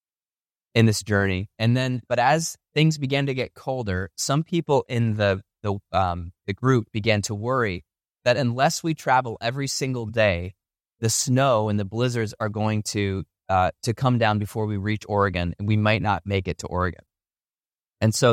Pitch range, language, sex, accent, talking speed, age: 100-125 Hz, English, male, American, 185 wpm, 20-39